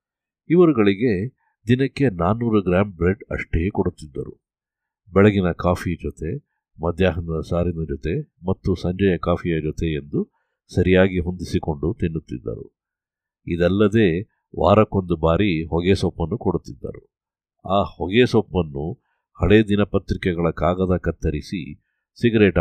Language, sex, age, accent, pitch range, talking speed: Kannada, male, 50-69, native, 85-105 Hz, 95 wpm